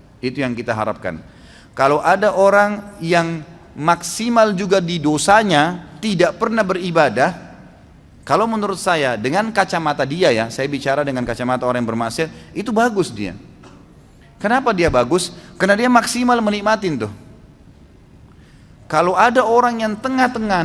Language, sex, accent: Indonesian, male, native